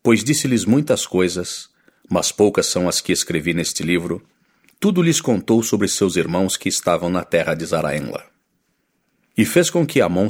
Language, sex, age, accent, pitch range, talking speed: English, male, 50-69, Brazilian, 90-135 Hz, 170 wpm